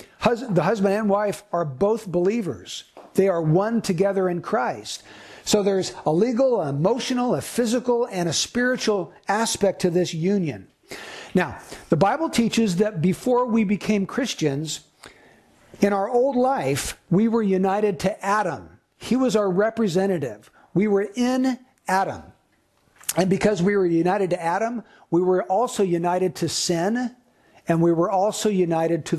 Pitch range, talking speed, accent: 175-230 Hz, 150 wpm, American